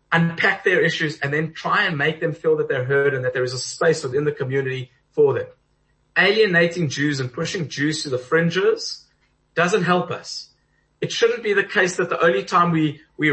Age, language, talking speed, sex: 30-49, English, 205 wpm, male